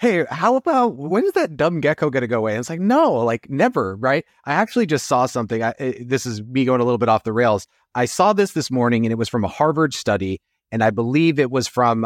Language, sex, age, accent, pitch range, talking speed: English, male, 30-49, American, 115-150 Hz, 265 wpm